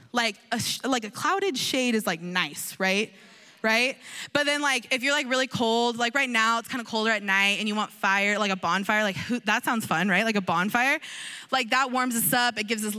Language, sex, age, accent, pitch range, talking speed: English, female, 20-39, American, 210-265 Hz, 240 wpm